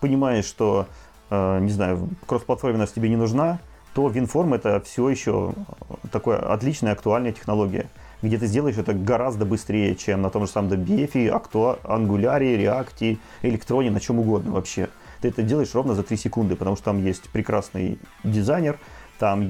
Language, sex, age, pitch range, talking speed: Russian, male, 30-49, 100-120 Hz, 160 wpm